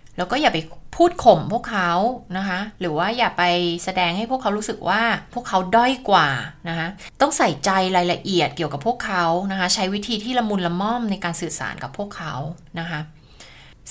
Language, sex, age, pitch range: Thai, female, 20-39, 165-220 Hz